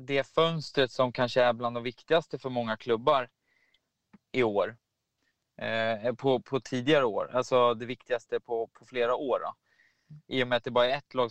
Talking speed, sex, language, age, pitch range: 185 wpm, male, English, 20-39, 120-135 Hz